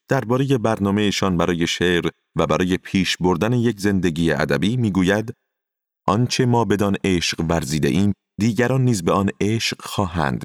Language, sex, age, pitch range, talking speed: Persian, male, 40-59, 85-110 Hz, 140 wpm